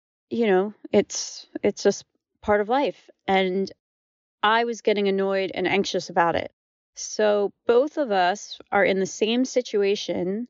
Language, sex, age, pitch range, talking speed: English, female, 30-49, 180-215 Hz, 150 wpm